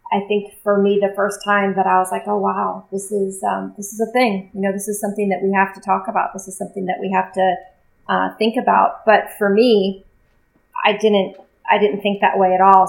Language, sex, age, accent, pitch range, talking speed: English, female, 30-49, American, 180-205 Hz, 245 wpm